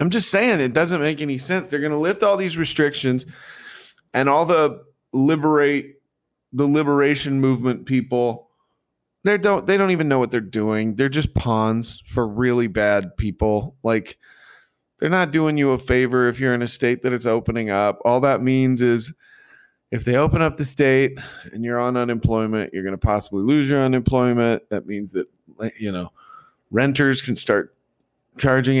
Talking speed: 175 wpm